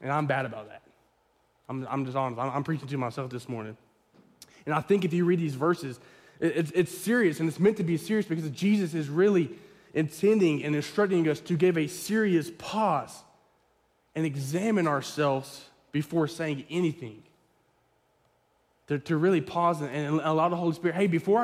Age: 20-39